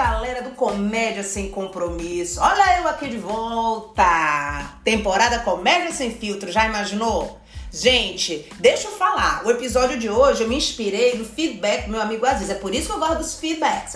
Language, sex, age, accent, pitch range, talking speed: Portuguese, female, 40-59, Brazilian, 230-330 Hz, 175 wpm